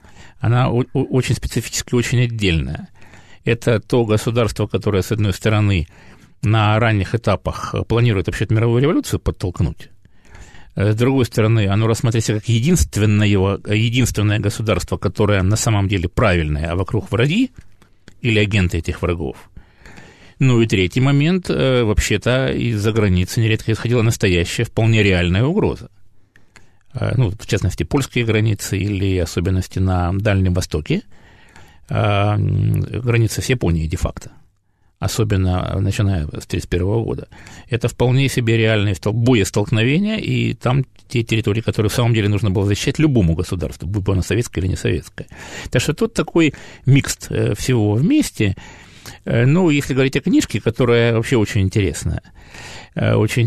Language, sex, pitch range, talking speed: Russian, male, 95-120 Hz, 130 wpm